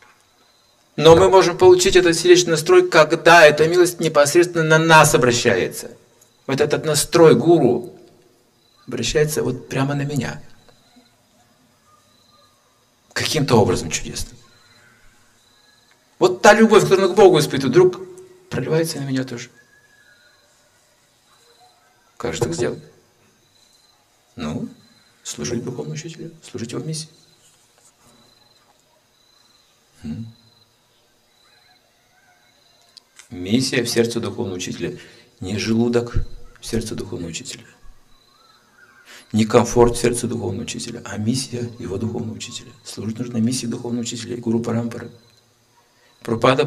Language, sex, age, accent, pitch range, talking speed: Russian, male, 50-69, native, 120-155 Hz, 105 wpm